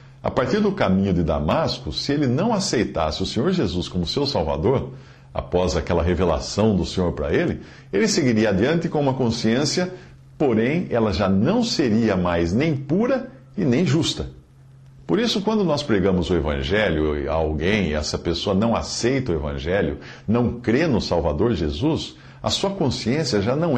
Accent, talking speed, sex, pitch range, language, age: Brazilian, 165 wpm, male, 95-135 Hz, Portuguese, 50-69